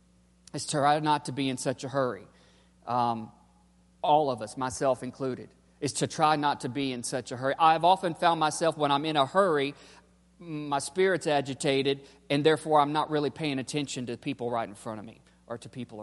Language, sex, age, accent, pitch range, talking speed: English, male, 40-59, American, 110-140 Hz, 205 wpm